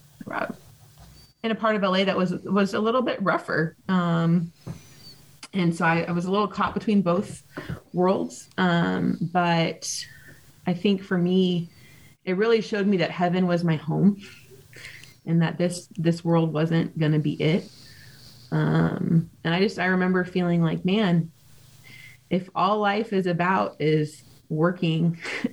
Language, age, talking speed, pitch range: English, 20-39, 155 wpm, 145-185 Hz